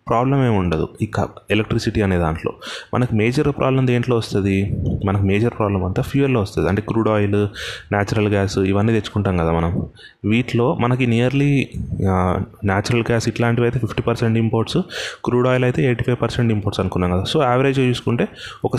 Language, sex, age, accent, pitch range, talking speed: Telugu, male, 20-39, native, 100-120 Hz, 160 wpm